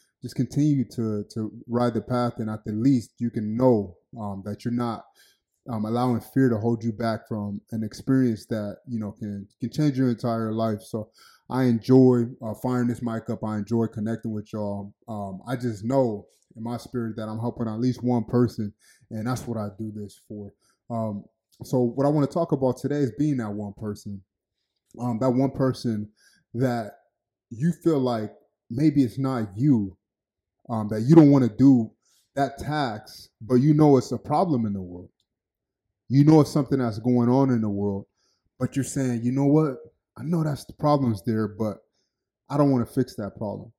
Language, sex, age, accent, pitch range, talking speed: English, male, 20-39, American, 110-130 Hz, 200 wpm